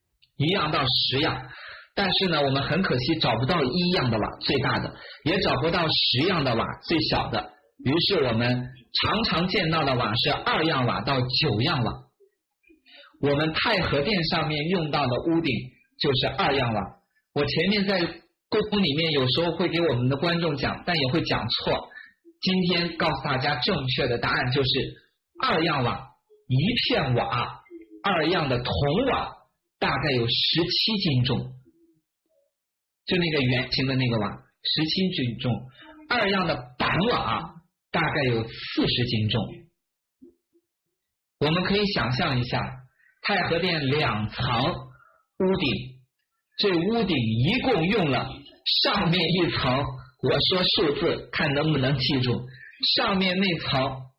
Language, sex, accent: Chinese, male, native